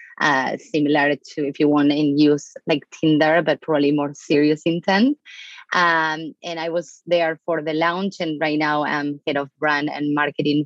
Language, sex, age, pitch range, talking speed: English, female, 20-39, 145-170 Hz, 180 wpm